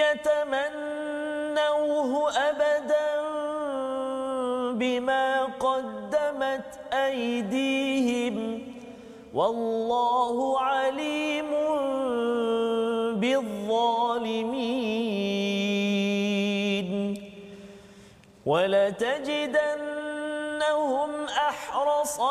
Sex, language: male, Malayalam